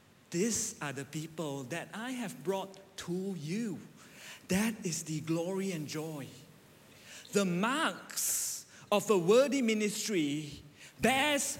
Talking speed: 120 wpm